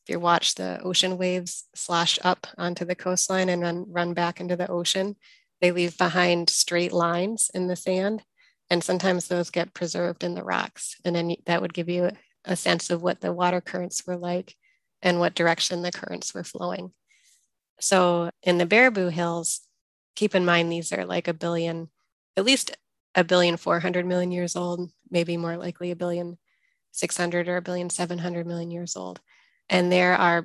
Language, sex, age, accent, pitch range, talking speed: English, female, 20-39, American, 170-180 Hz, 180 wpm